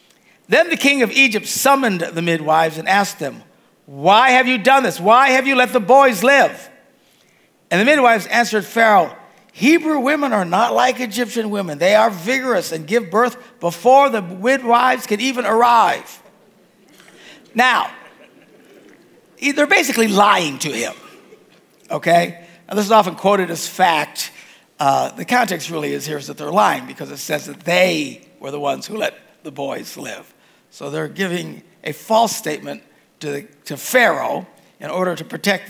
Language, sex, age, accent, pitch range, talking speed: English, male, 50-69, American, 170-240 Hz, 165 wpm